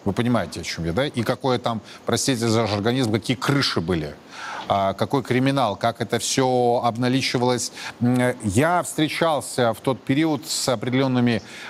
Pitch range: 120-145 Hz